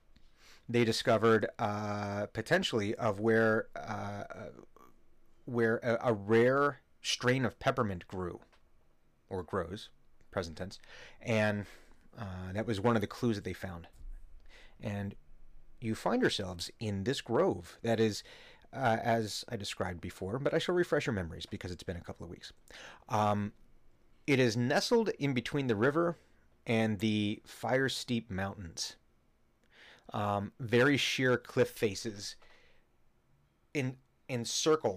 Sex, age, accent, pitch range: male, 30-49, American, 95-120 Hz